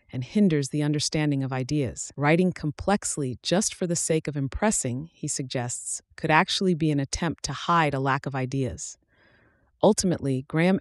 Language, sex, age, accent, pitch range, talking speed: English, female, 30-49, American, 130-165 Hz, 160 wpm